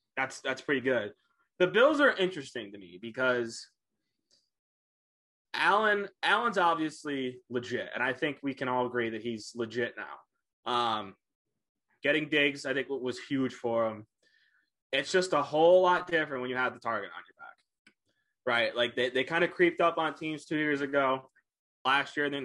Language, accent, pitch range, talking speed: English, American, 125-160 Hz, 175 wpm